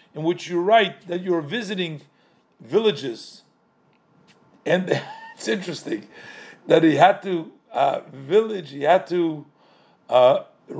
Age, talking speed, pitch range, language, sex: 50-69, 115 wpm, 150-205 Hz, English, male